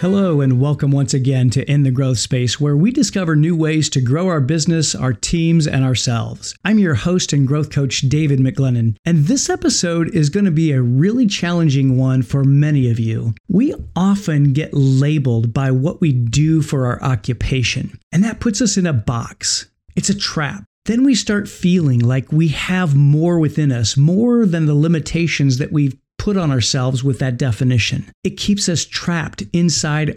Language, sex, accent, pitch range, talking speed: English, male, American, 135-180 Hz, 185 wpm